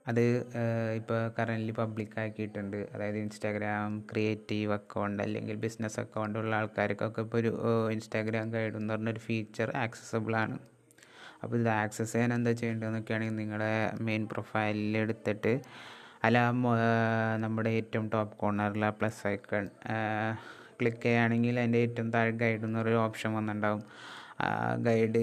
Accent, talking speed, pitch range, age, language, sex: native, 110 wpm, 110-115 Hz, 20-39, Malayalam, male